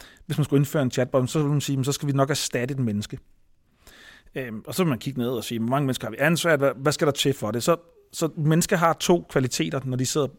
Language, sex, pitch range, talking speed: Danish, male, 130-155 Hz, 265 wpm